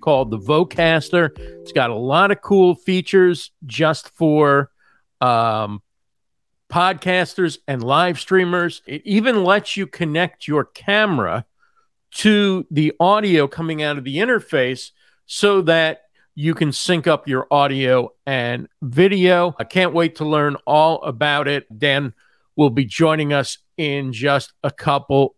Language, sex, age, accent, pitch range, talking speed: English, male, 50-69, American, 140-185 Hz, 140 wpm